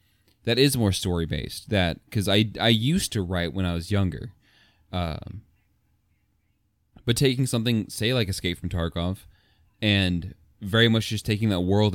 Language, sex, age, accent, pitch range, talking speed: English, male, 20-39, American, 90-105 Hz, 160 wpm